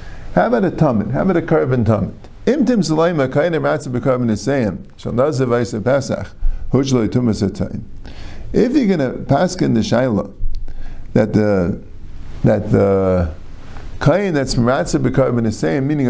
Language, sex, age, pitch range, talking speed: English, male, 50-69, 110-170 Hz, 170 wpm